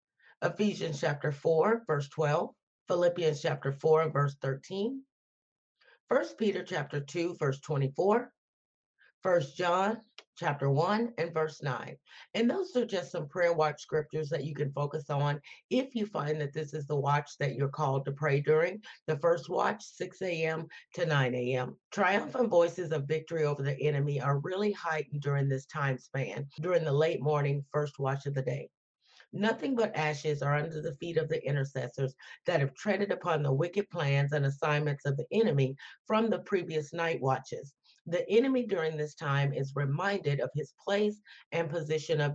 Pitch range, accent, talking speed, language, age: 145-185 Hz, American, 170 wpm, English, 40-59